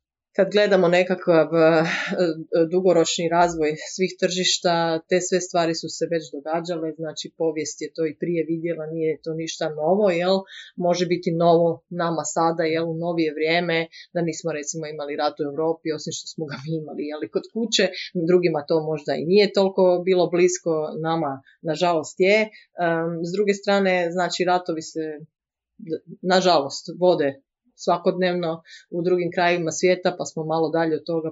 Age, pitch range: 30-49, 160-185 Hz